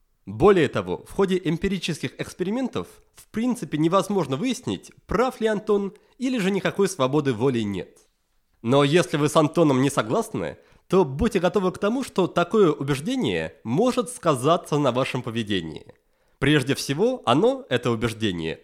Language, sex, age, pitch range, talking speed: Russian, male, 30-49, 130-195 Hz, 140 wpm